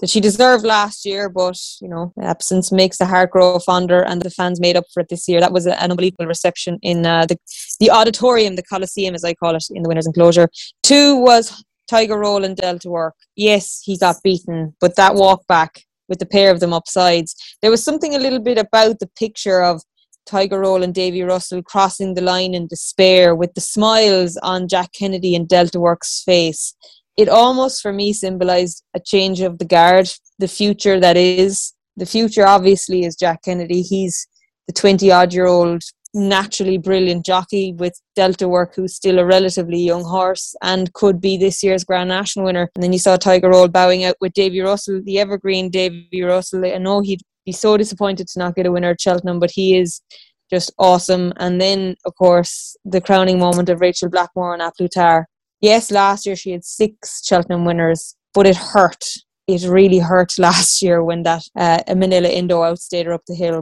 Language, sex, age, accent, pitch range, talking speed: English, female, 20-39, Irish, 175-195 Hz, 195 wpm